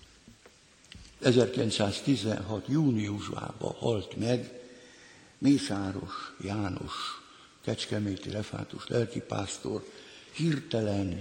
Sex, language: male, Hungarian